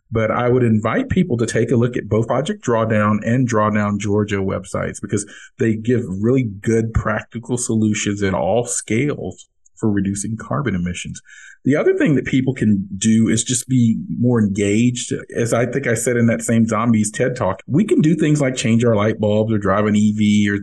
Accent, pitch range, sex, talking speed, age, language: American, 105-120 Hz, male, 200 wpm, 40-59, English